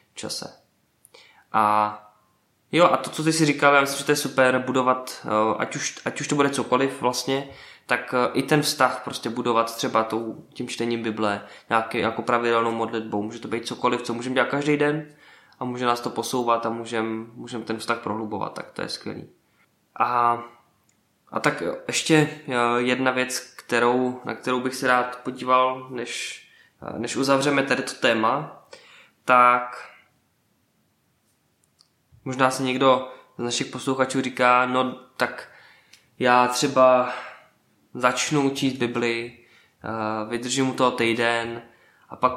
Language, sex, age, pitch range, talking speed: Czech, male, 20-39, 115-130 Hz, 145 wpm